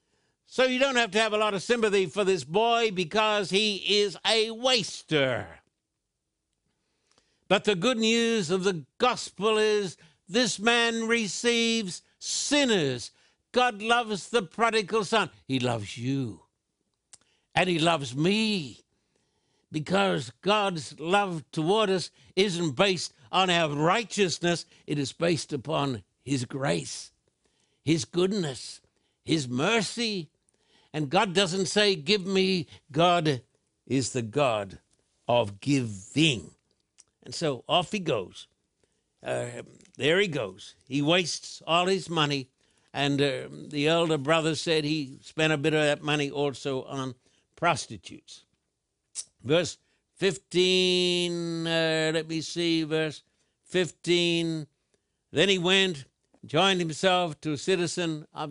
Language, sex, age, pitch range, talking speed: English, male, 60-79, 145-200 Hz, 125 wpm